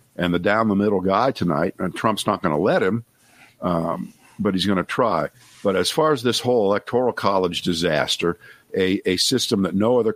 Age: 50-69